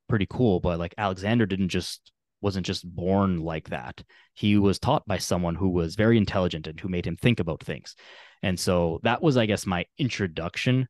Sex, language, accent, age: male, English, American, 20-39